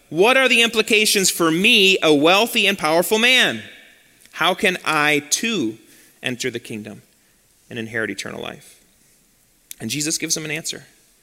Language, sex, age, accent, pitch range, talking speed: English, male, 30-49, American, 150-215 Hz, 150 wpm